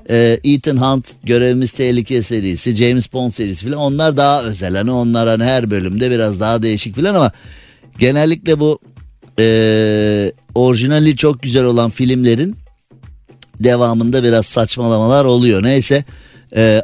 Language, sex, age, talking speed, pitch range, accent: Turkish, male, 50-69, 130 wpm, 110-140 Hz, native